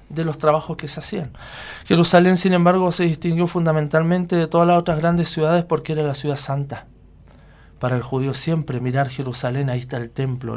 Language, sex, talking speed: Spanish, male, 185 wpm